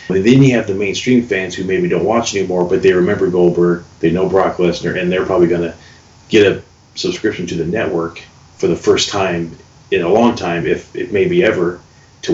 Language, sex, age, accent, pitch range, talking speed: English, male, 30-49, American, 85-110 Hz, 210 wpm